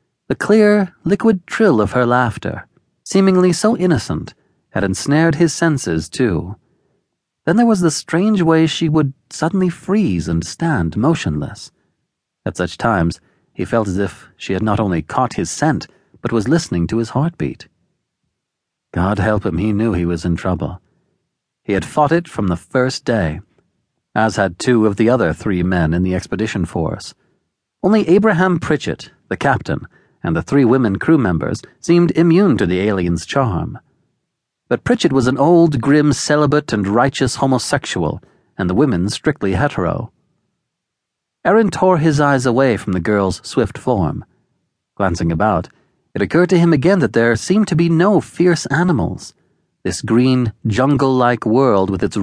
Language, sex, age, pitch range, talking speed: English, male, 40-59, 100-165 Hz, 160 wpm